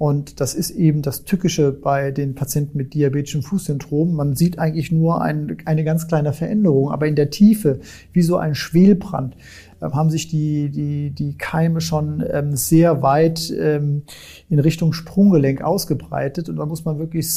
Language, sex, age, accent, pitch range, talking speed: German, male, 40-59, German, 145-160 Hz, 160 wpm